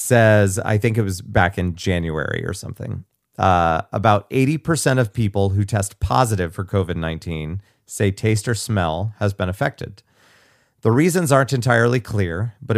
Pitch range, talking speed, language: 95-120 Hz, 155 wpm, English